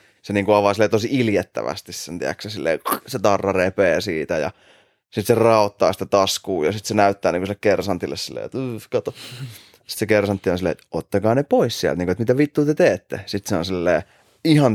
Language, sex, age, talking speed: Finnish, male, 20-39, 185 wpm